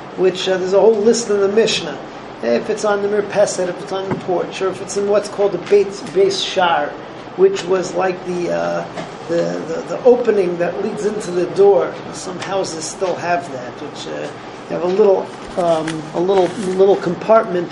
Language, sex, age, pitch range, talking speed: English, male, 40-59, 175-205 Hz, 200 wpm